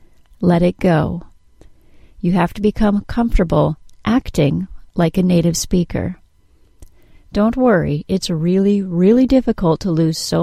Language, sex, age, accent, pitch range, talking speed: English, female, 40-59, American, 155-205 Hz, 125 wpm